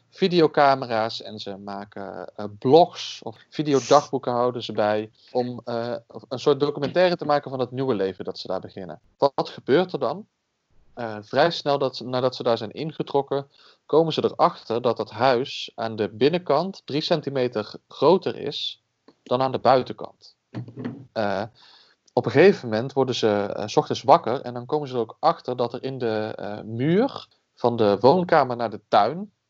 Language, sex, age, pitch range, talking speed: Dutch, male, 40-59, 110-140 Hz, 175 wpm